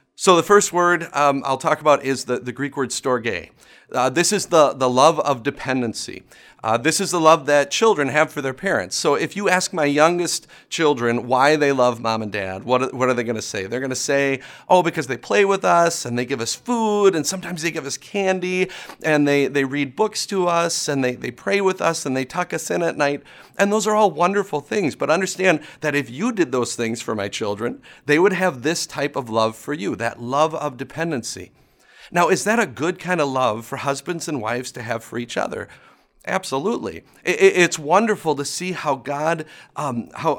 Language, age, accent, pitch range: English, 30-49, American, 135-175 Hz